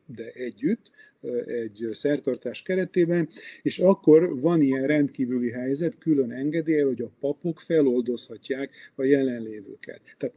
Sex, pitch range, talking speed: male, 125-145 Hz, 115 wpm